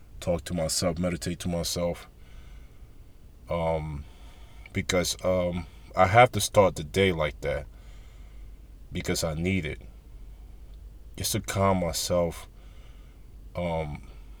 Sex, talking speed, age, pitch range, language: male, 110 wpm, 20-39, 85-95 Hz, English